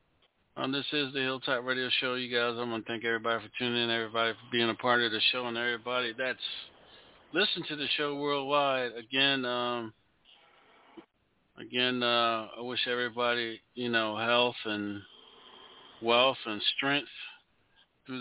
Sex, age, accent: male, 40-59, American